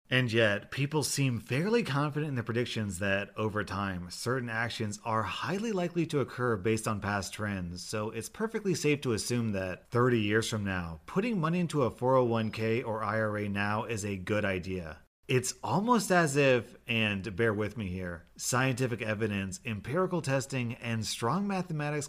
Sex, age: male, 30-49